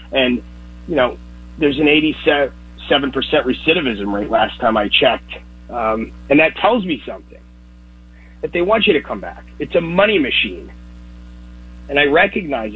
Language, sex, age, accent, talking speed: English, male, 40-59, American, 150 wpm